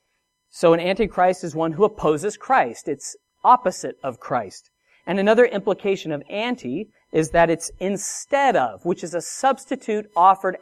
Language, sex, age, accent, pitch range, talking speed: English, male, 40-59, American, 155-230 Hz, 155 wpm